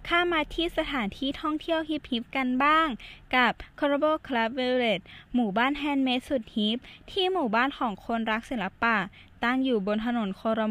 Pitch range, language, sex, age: 215-270 Hz, Thai, female, 10-29